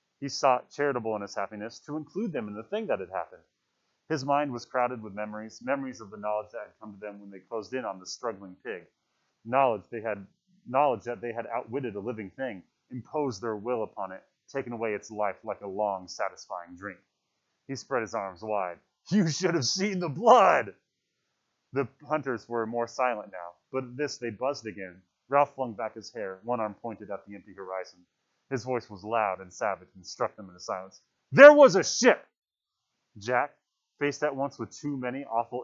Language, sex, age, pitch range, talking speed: English, male, 30-49, 110-155 Hz, 205 wpm